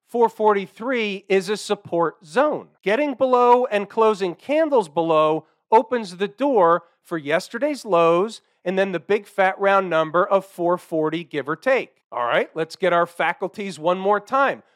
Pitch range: 175-225 Hz